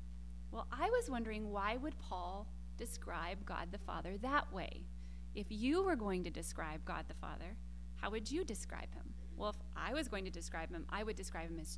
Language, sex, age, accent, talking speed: English, female, 30-49, American, 205 wpm